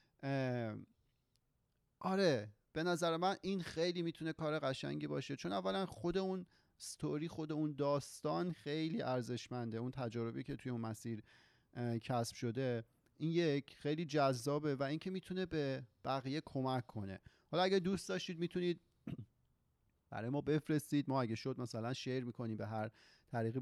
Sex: male